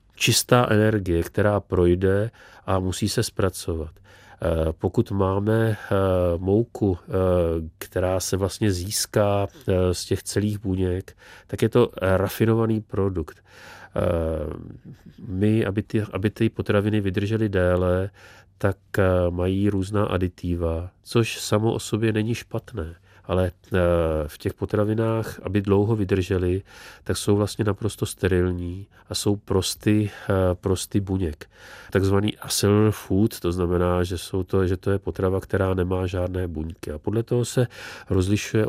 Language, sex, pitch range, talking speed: Czech, male, 90-105 Hz, 125 wpm